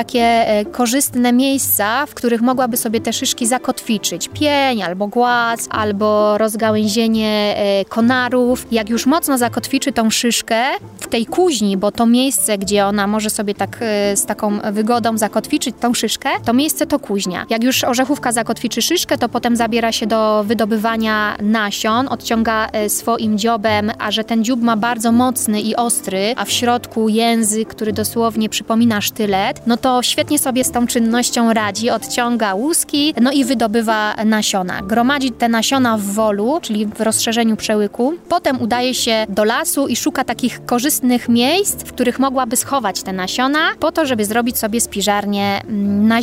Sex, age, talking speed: female, 20-39, 155 wpm